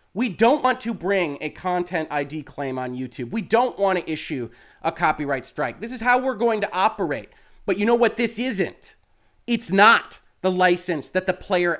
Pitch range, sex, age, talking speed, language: 170-240 Hz, male, 30-49, 200 wpm, English